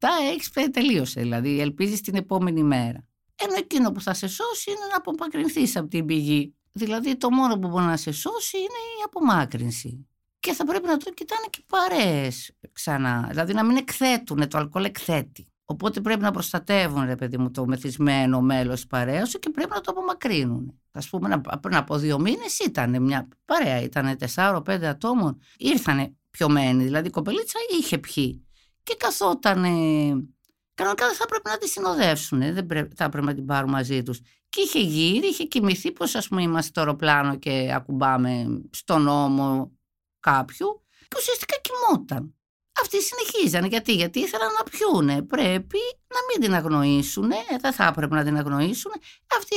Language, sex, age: Greek, female, 50-69